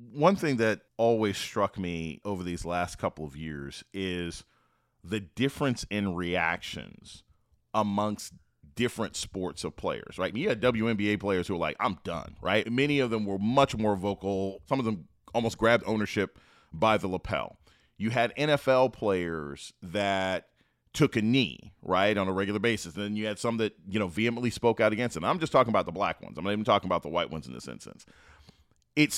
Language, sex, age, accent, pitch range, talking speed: English, male, 30-49, American, 90-120 Hz, 195 wpm